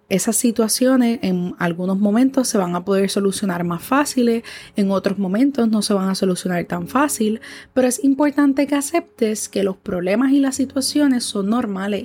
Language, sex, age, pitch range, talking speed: Spanish, female, 20-39, 180-245 Hz, 175 wpm